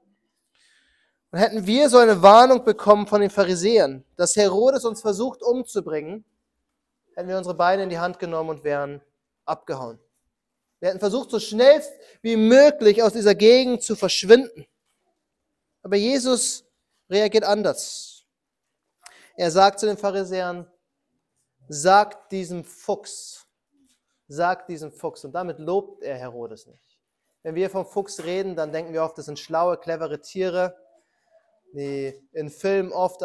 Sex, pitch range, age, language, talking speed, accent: male, 180-245 Hz, 30-49, German, 140 wpm, German